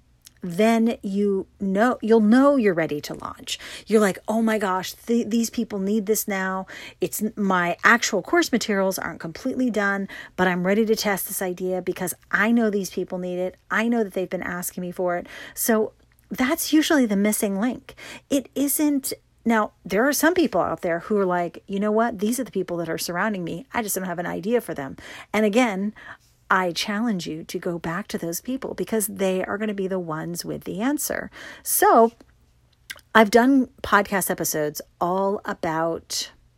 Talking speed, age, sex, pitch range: 190 wpm, 40-59, female, 175-220 Hz